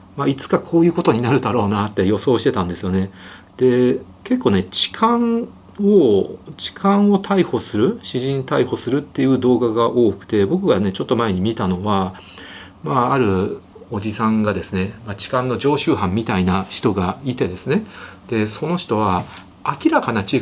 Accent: native